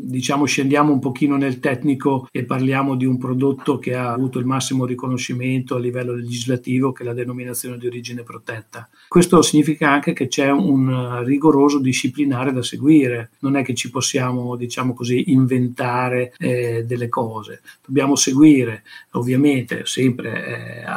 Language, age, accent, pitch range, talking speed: Italian, 50-69, native, 125-150 Hz, 150 wpm